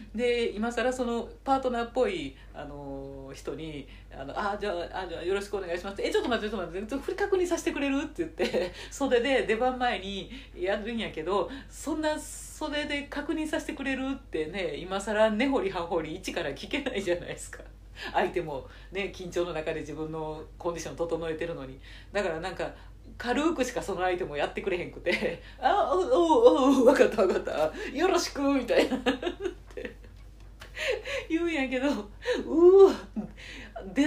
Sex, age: female, 40-59